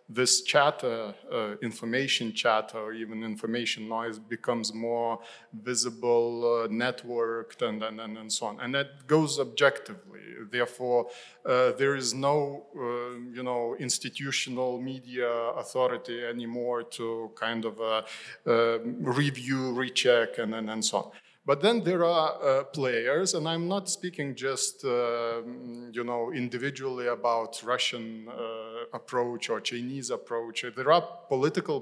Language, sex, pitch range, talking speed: English, male, 115-140 Hz, 140 wpm